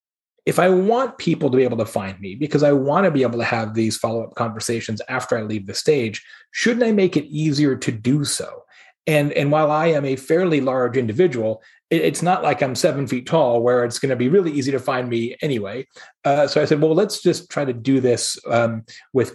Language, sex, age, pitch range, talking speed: English, male, 30-49, 125-165 Hz, 235 wpm